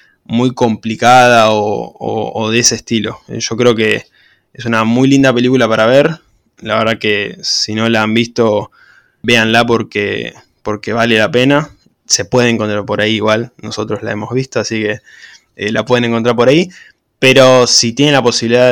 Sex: male